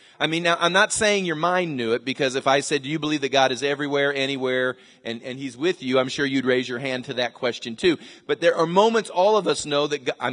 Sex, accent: male, American